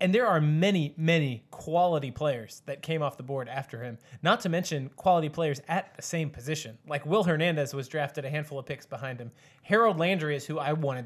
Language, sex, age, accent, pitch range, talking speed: English, male, 20-39, American, 135-165 Hz, 215 wpm